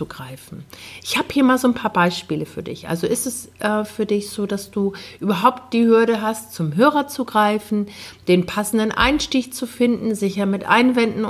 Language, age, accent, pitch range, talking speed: German, 50-69, German, 195-250 Hz, 185 wpm